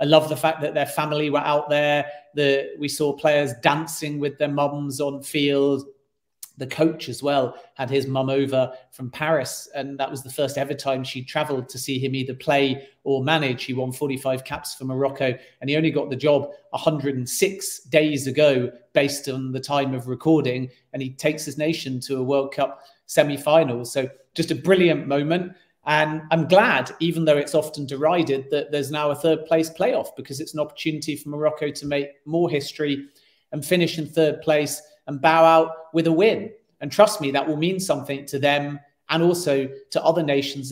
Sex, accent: male, British